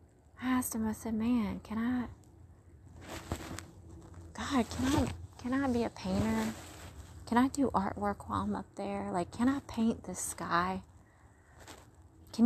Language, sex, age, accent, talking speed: English, female, 30-49, American, 150 wpm